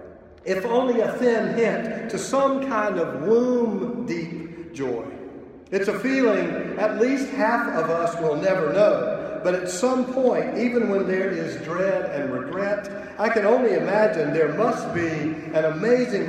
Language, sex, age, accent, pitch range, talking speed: English, male, 50-69, American, 170-225 Hz, 155 wpm